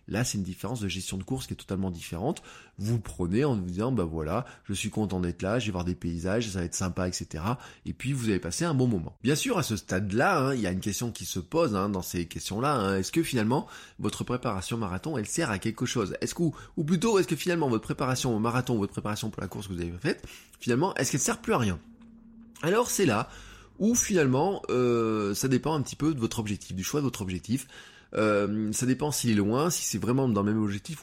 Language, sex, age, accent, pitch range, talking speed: French, male, 20-39, French, 95-130 Hz, 265 wpm